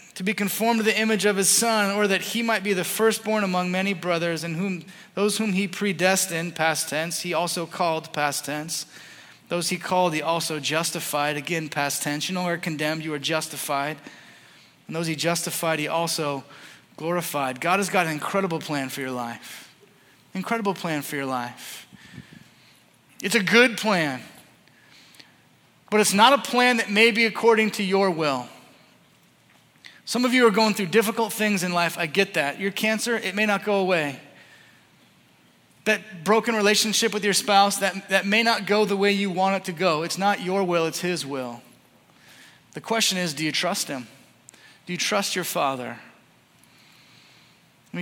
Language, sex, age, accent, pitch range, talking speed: English, male, 30-49, American, 155-205 Hz, 180 wpm